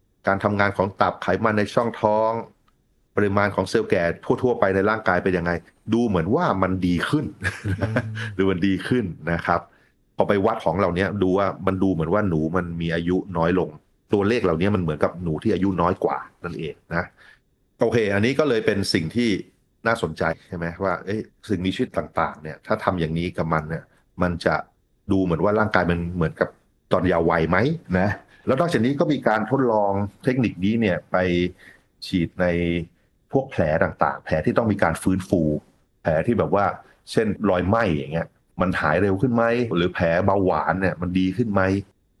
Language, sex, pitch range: Thai, male, 85-100 Hz